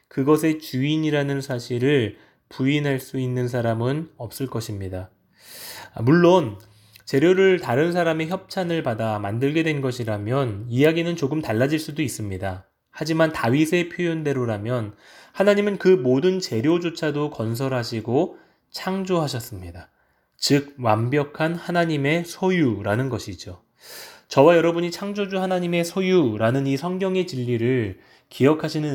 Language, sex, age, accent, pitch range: Korean, male, 20-39, native, 115-165 Hz